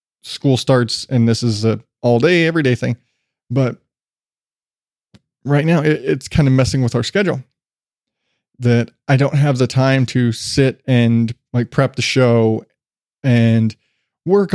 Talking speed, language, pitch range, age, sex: 150 wpm, English, 120-140 Hz, 20-39, male